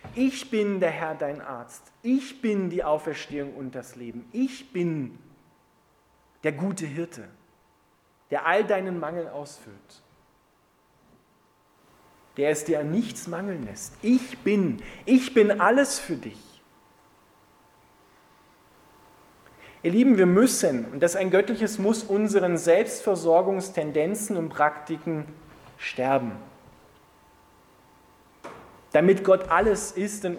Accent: German